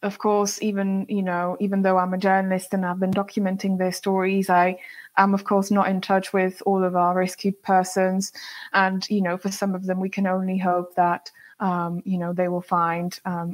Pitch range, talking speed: 185-215 Hz, 215 wpm